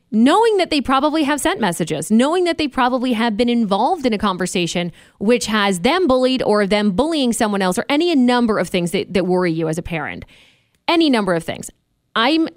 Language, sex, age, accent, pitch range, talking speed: English, female, 20-39, American, 190-260 Hz, 210 wpm